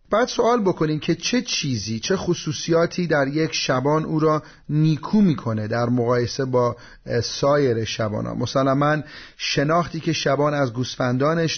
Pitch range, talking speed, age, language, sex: 130-160 Hz, 145 wpm, 30-49, Persian, male